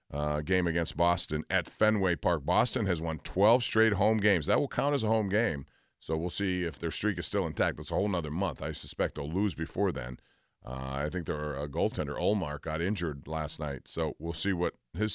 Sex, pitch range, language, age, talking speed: male, 80-110 Hz, English, 40-59, 220 wpm